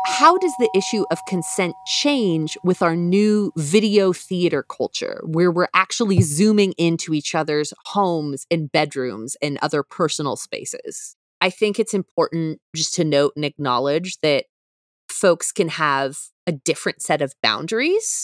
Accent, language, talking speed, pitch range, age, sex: American, English, 150 wpm, 145-200 Hz, 20-39, female